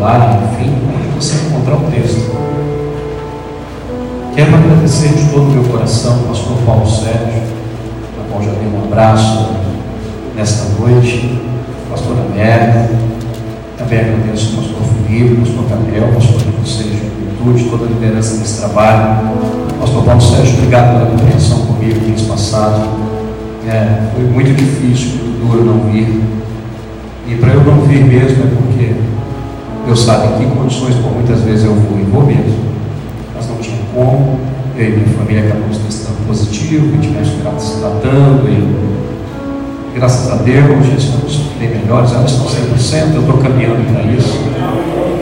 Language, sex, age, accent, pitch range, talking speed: Portuguese, male, 40-59, Brazilian, 110-130 Hz, 150 wpm